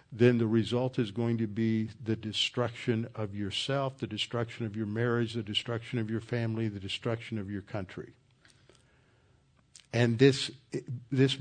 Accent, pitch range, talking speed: American, 110-130 Hz, 155 wpm